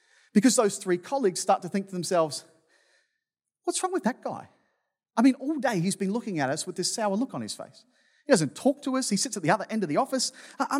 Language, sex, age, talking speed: English, male, 30-49, 250 wpm